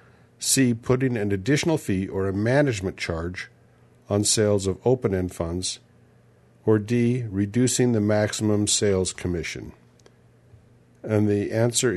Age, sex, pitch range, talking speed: 50-69, male, 95-120 Hz, 120 wpm